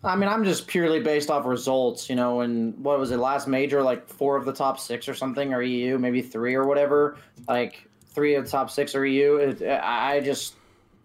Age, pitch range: 20-39, 135-170 Hz